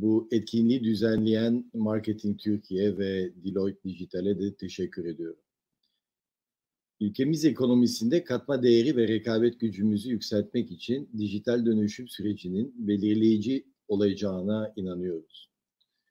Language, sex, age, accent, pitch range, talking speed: Turkish, male, 50-69, native, 100-120 Hz, 95 wpm